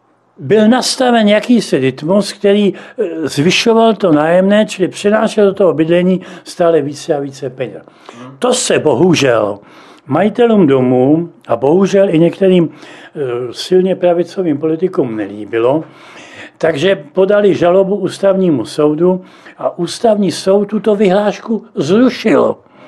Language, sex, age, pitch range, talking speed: Czech, male, 60-79, 165-215 Hz, 110 wpm